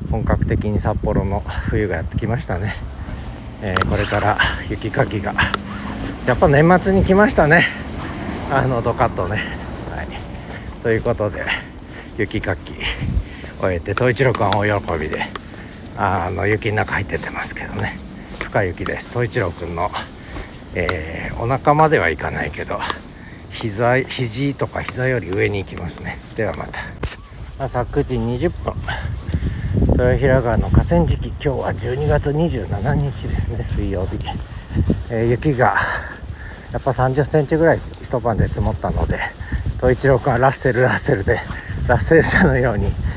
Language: Japanese